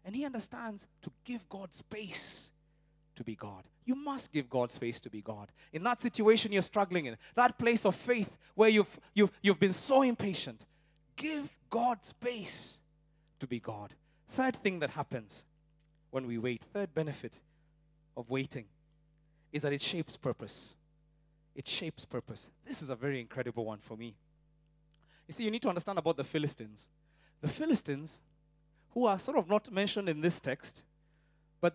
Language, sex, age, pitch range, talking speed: English, male, 30-49, 145-205 Hz, 165 wpm